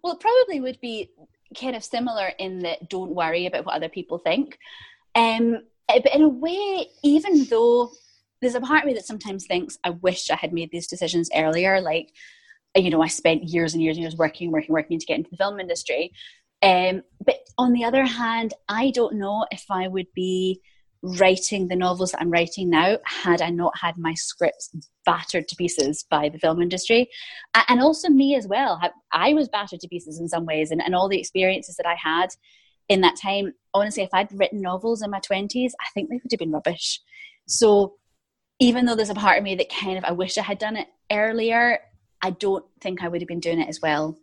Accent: British